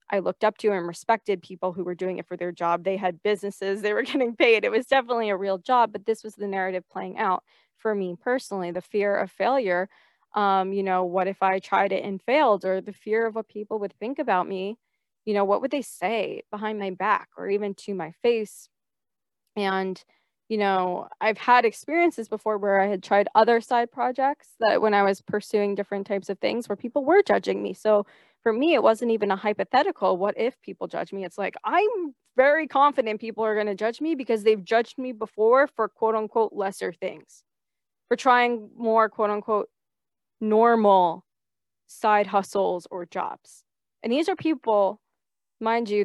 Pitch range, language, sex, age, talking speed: 195-235 Hz, English, female, 20-39, 195 wpm